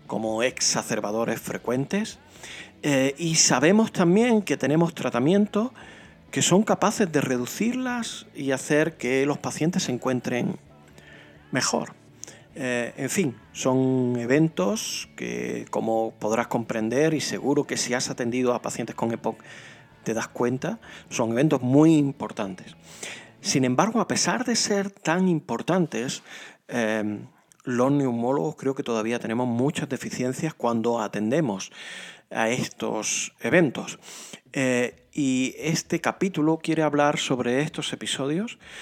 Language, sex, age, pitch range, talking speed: Spanish, male, 40-59, 120-165 Hz, 120 wpm